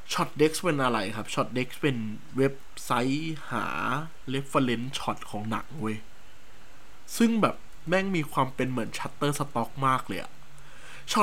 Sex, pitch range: male, 130-180 Hz